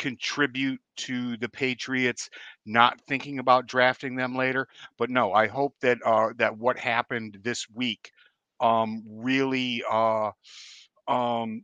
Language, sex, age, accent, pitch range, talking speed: English, male, 50-69, American, 110-130 Hz, 130 wpm